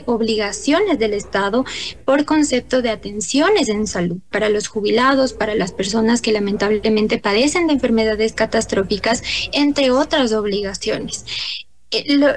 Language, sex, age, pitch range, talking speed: Spanish, female, 20-39, 215-270 Hz, 125 wpm